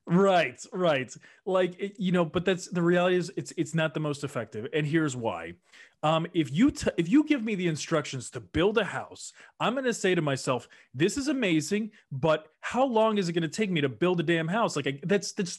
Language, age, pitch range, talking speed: English, 30-49, 150-205 Hz, 215 wpm